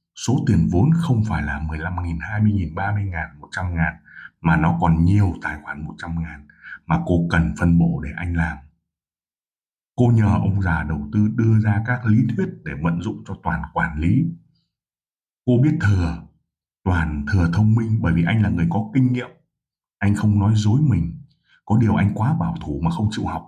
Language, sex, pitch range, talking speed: Vietnamese, male, 90-130 Hz, 185 wpm